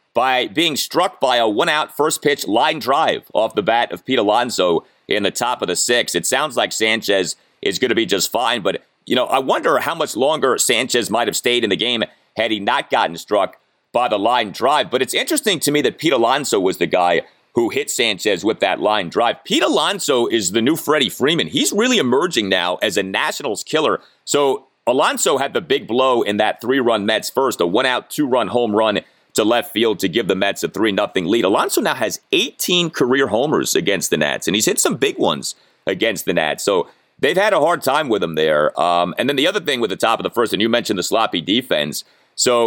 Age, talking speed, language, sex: 30-49, 225 wpm, English, male